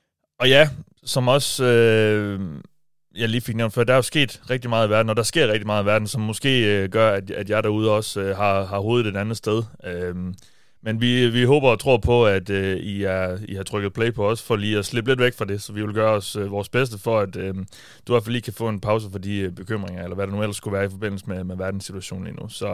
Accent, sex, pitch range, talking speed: native, male, 100-120 Hz, 280 wpm